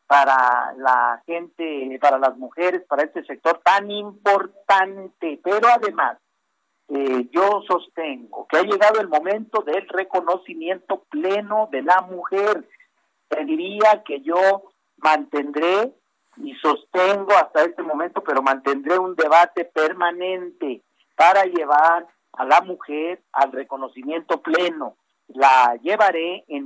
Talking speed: 115 wpm